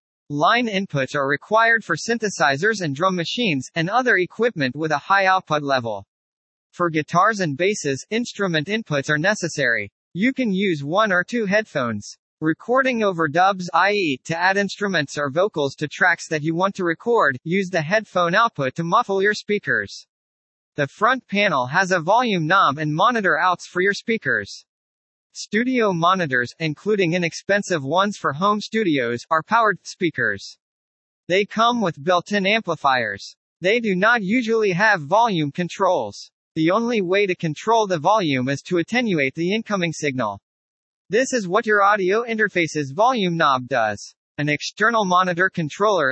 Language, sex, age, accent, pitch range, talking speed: English, male, 40-59, American, 150-210 Hz, 155 wpm